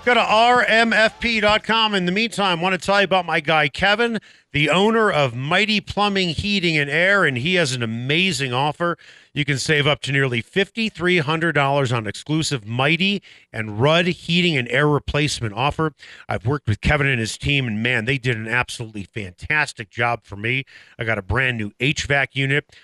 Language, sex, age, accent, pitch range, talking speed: English, male, 40-59, American, 120-170 Hz, 185 wpm